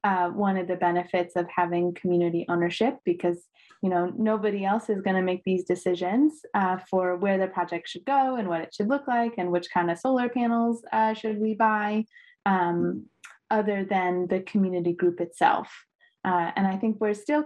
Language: English